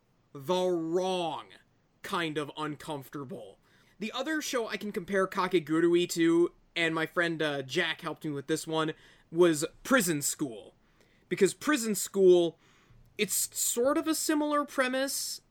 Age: 20-39